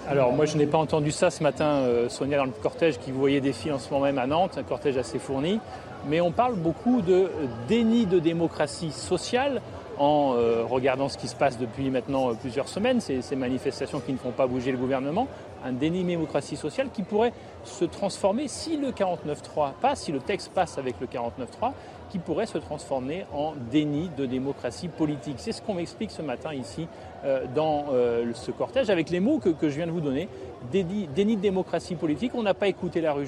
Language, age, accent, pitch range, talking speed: French, 30-49, French, 135-180 Hz, 215 wpm